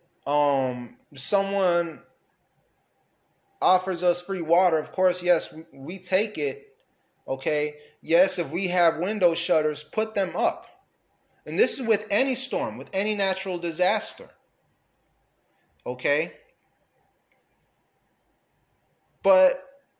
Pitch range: 165-195 Hz